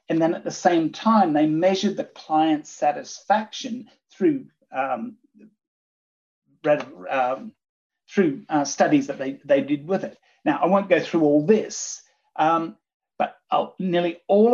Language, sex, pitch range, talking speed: English, male, 150-225 Hz, 150 wpm